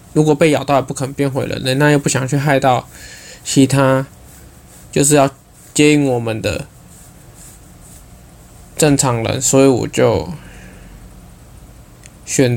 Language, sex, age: Chinese, male, 20-39